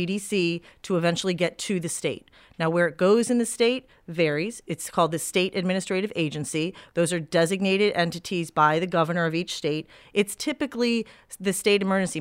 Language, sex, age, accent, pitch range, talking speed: English, female, 40-59, American, 170-200 Hz, 175 wpm